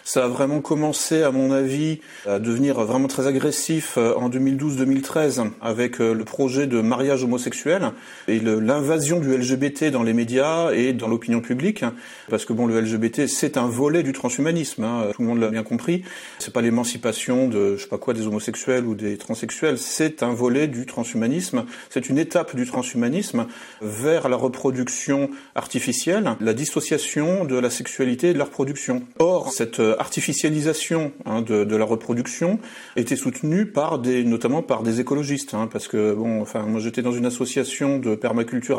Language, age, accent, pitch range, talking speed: French, 30-49, French, 115-145 Hz, 175 wpm